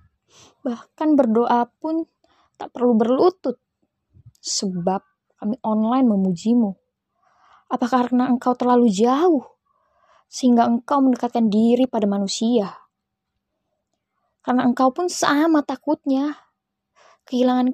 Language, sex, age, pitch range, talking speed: Indonesian, female, 20-39, 210-275 Hz, 90 wpm